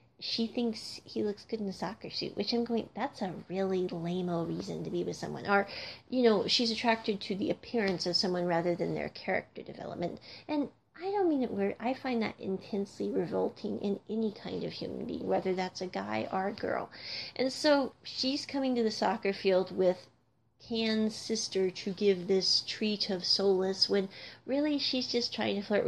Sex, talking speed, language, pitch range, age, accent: female, 195 wpm, English, 195-265 Hz, 40-59, American